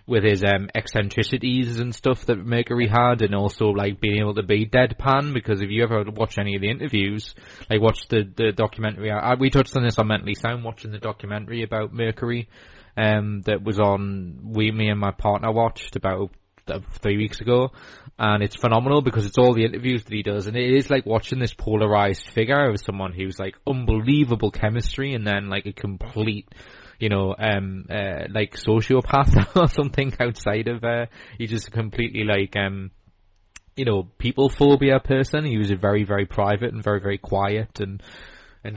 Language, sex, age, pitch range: English, male, 20-39, 100-120 Hz